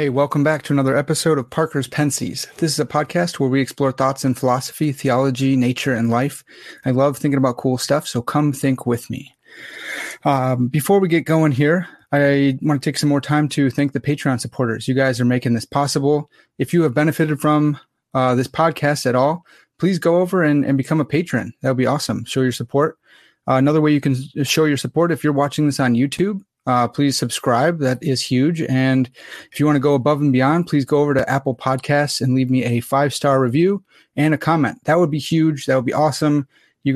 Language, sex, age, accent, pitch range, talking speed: English, male, 30-49, American, 130-150 Hz, 220 wpm